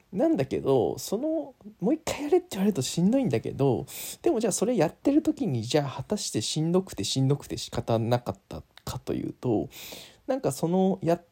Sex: male